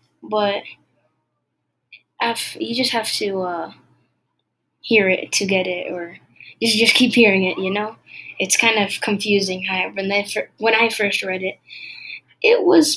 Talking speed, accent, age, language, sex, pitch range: 140 wpm, American, 10-29, English, female, 195-245 Hz